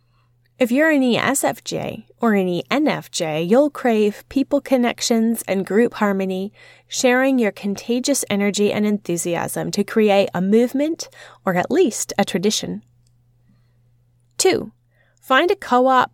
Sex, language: female, English